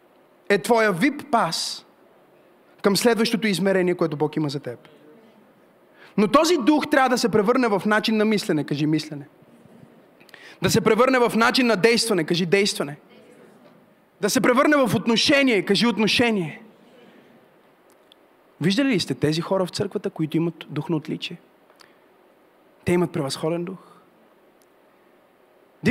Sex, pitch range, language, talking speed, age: male, 180-250 Hz, Bulgarian, 130 wpm, 30-49